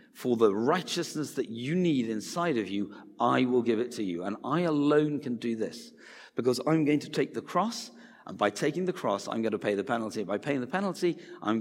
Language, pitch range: English, 120-175 Hz